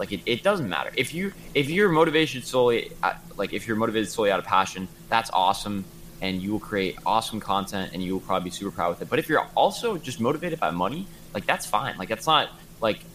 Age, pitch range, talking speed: 20-39, 95-135 Hz, 235 wpm